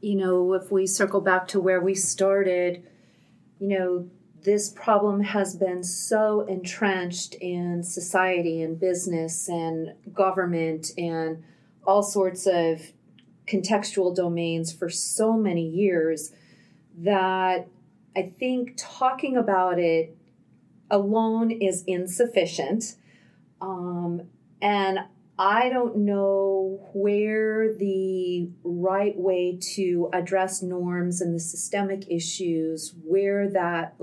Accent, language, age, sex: American, English, 40-59, female